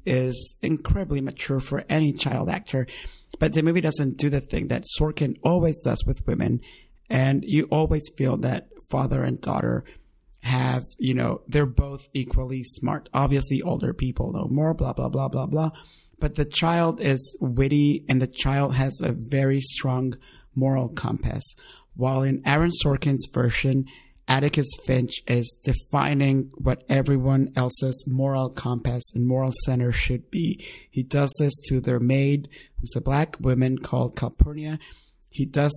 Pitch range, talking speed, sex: 130-150 Hz, 155 wpm, male